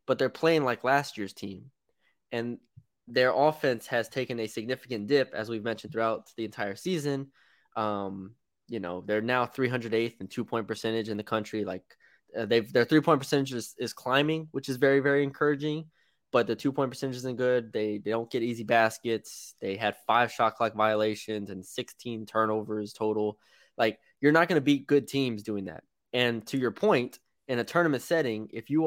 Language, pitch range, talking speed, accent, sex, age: English, 110-140 Hz, 195 wpm, American, male, 20-39